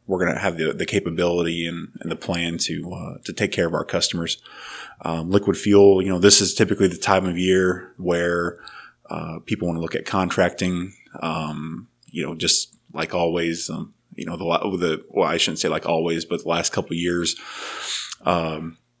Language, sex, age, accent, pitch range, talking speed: English, male, 20-39, American, 85-90 Hz, 200 wpm